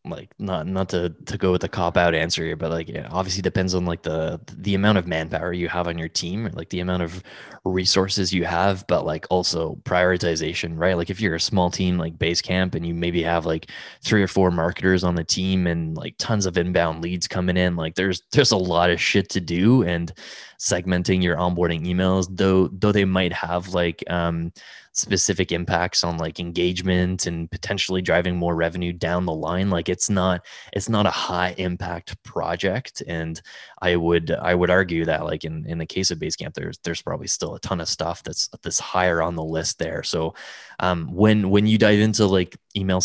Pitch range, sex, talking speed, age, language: 85-95 Hz, male, 210 wpm, 20-39, English